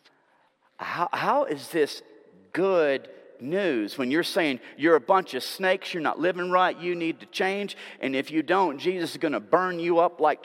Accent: American